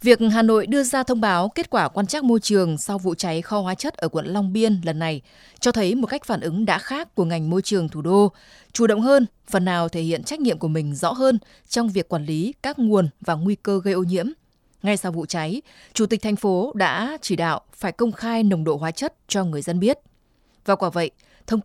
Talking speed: 250 wpm